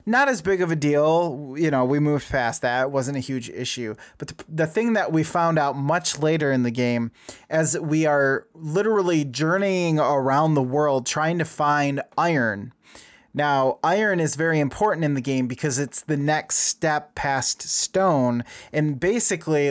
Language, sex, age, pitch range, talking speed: English, male, 20-39, 130-155 Hz, 180 wpm